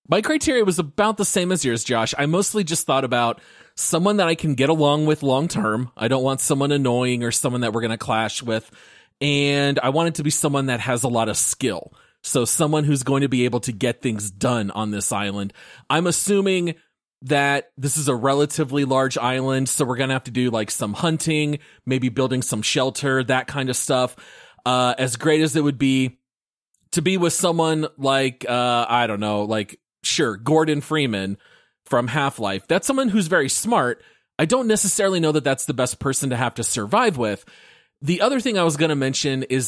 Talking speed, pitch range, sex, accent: 210 wpm, 120-150 Hz, male, American